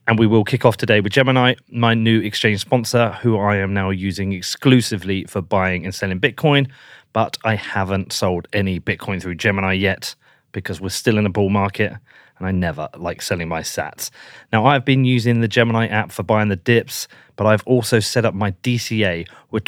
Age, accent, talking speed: 30-49, British, 200 wpm